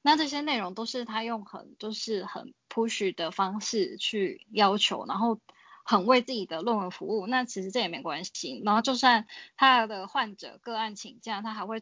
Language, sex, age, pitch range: Chinese, female, 10-29, 195-240 Hz